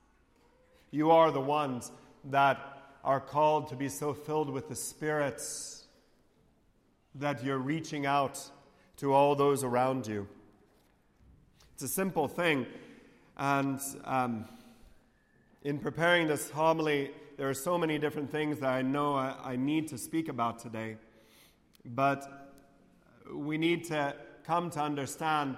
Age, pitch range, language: 40-59, 135-160 Hz, English